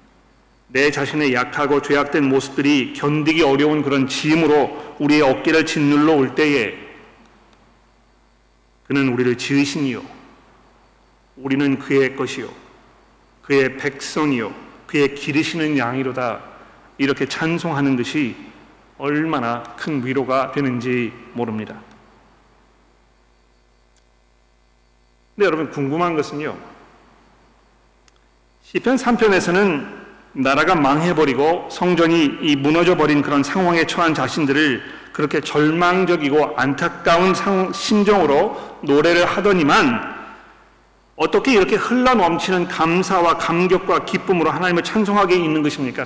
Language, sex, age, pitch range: Korean, male, 40-59, 130-175 Hz